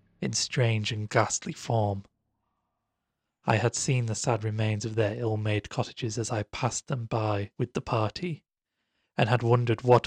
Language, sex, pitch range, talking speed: English, male, 105-120 Hz, 160 wpm